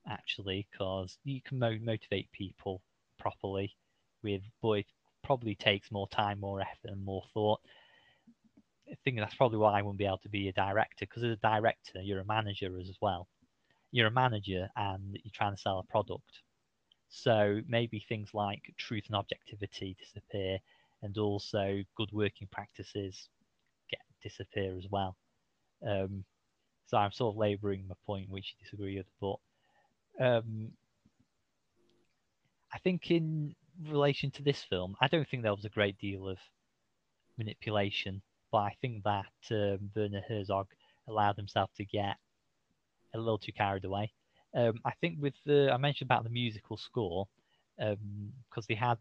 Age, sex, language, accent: 20-39, male, English, British